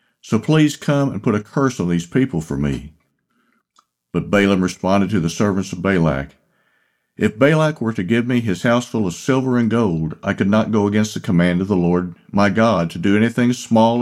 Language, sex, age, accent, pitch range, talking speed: English, male, 50-69, American, 85-125 Hz, 210 wpm